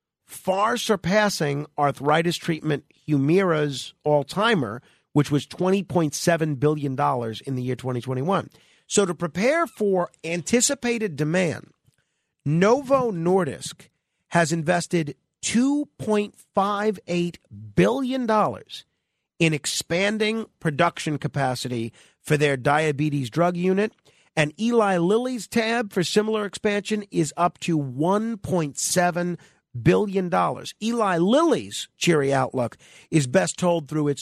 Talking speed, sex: 105 wpm, male